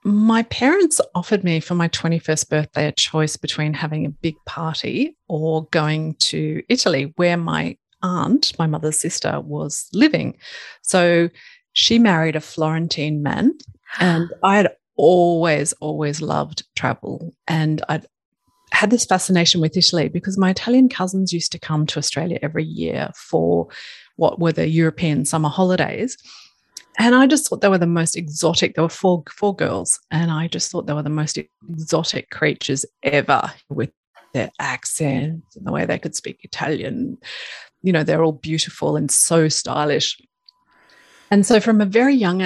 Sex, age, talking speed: female, 30-49, 160 wpm